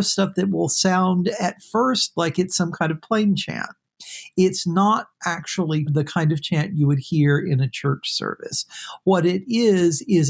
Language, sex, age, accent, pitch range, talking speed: English, male, 50-69, American, 140-175 Hz, 180 wpm